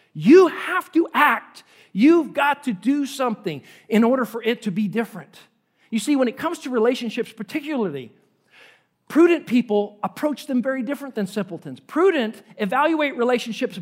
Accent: American